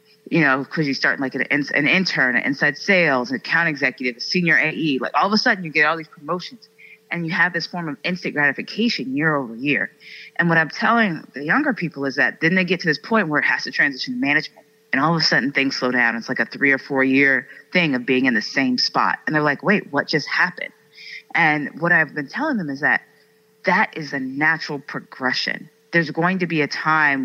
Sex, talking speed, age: female, 240 wpm, 30-49